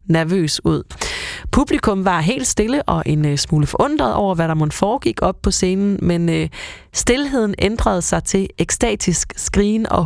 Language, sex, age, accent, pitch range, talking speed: Danish, female, 30-49, native, 165-210 Hz, 165 wpm